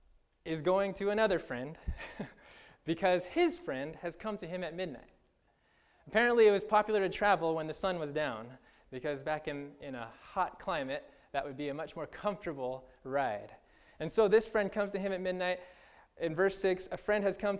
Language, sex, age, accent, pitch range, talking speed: English, male, 20-39, American, 150-205 Hz, 190 wpm